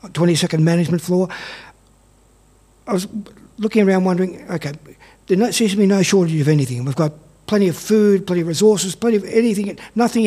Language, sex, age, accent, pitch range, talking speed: English, male, 50-69, Australian, 160-200 Hz, 170 wpm